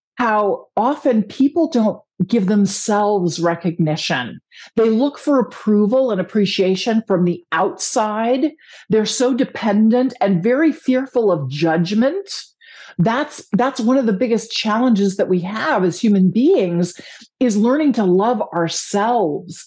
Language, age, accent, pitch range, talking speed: English, 50-69, American, 190-255 Hz, 130 wpm